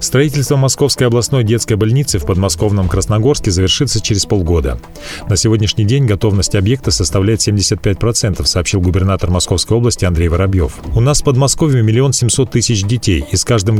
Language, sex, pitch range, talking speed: Russian, male, 95-125 Hz, 150 wpm